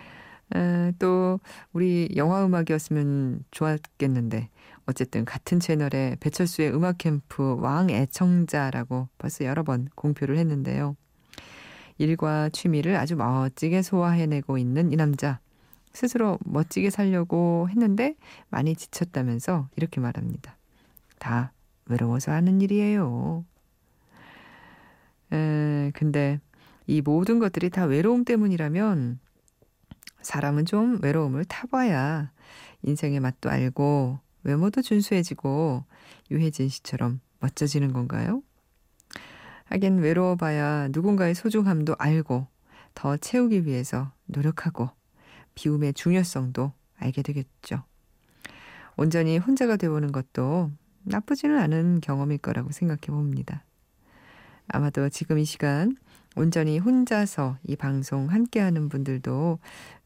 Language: Korean